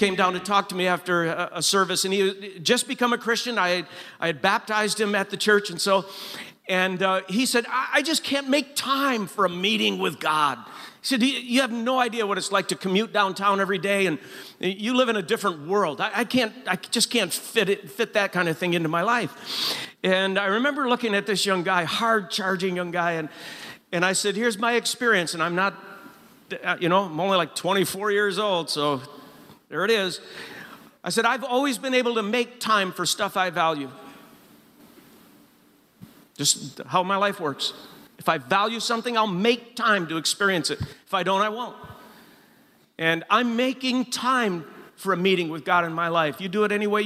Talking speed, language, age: 210 wpm, English, 50-69